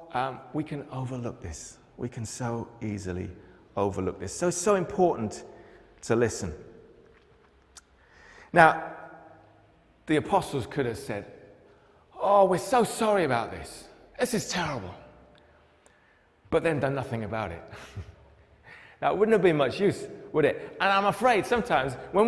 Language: English